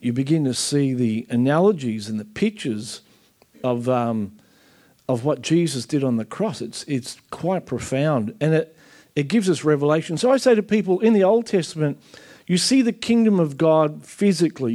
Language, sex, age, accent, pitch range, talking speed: English, male, 50-69, Australian, 135-180 Hz, 180 wpm